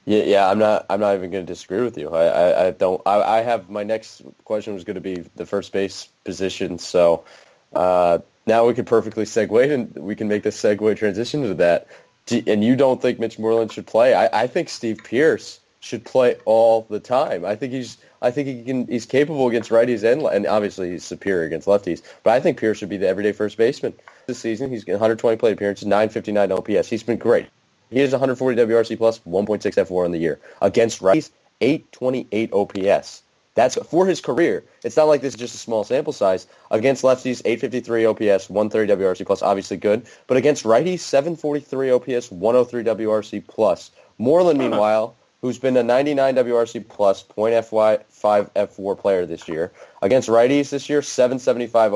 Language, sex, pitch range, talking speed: English, male, 100-125 Hz, 195 wpm